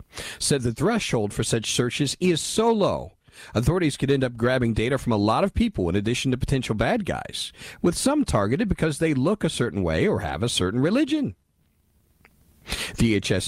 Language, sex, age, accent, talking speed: English, male, 50-69, American, 185 wpm